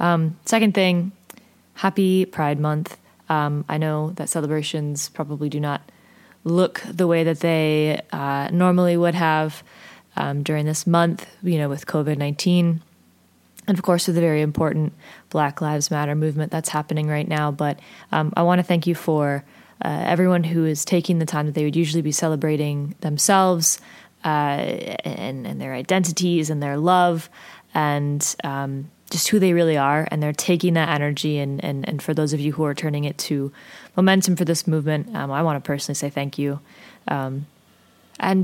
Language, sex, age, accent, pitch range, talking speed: English, female, 20-39, American, 150-175 Hz, 180 wpm